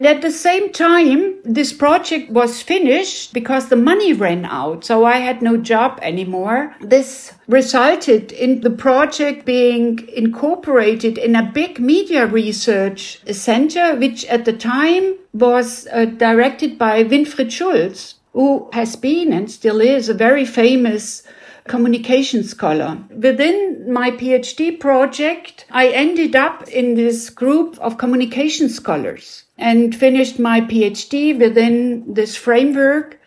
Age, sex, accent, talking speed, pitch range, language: 60-79, female, German, 130 wpm, 225-275 Hz, English